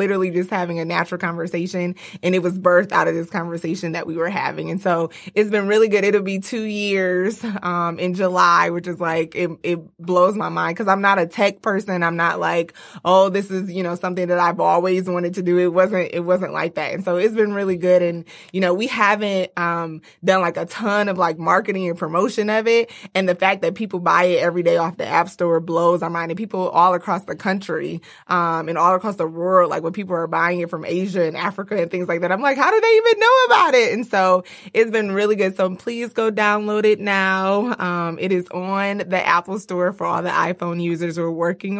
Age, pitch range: 20-39, 170-200 Hz